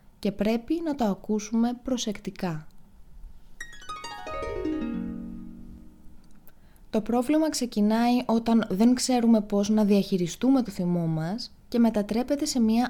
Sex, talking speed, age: female, 100 wpm, 20-39